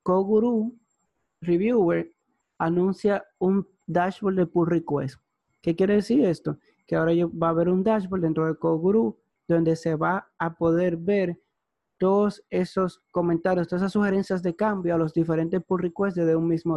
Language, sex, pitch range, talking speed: Spanish, male, 165-190 Hz, 160 wpm